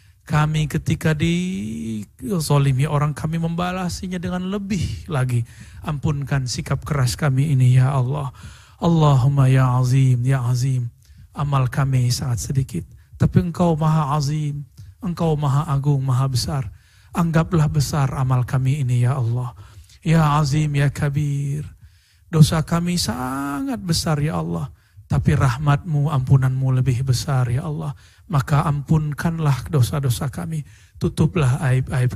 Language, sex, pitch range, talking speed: Indonesian, male, 130-150 Hz, 120 wpm